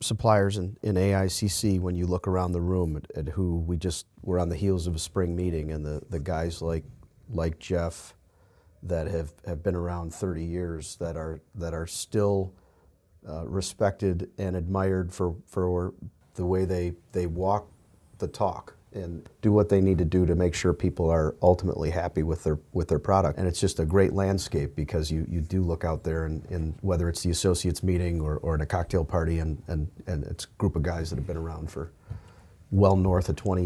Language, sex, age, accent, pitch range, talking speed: English, male, 40-59, American, 85-95 Hz, 210 wpm